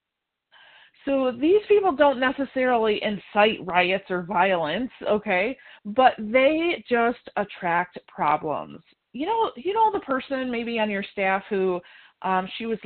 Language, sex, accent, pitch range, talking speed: English, female, American, 185-240 Hz, 135 wpm